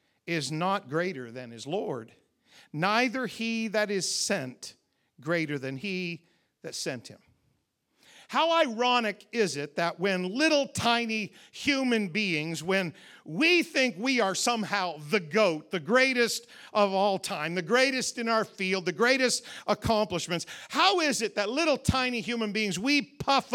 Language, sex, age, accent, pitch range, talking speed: English, male, 50-69, American, 200-270 Hz, 150 wpm